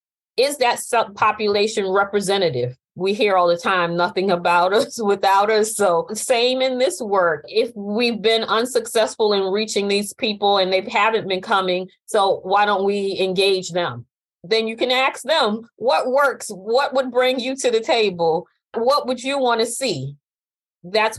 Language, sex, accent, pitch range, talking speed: English, female, American, 195-245 Hz, 165 wpm